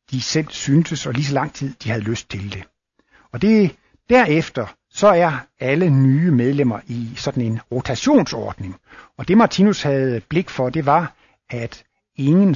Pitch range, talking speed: 130-185 Hz, 170 wpm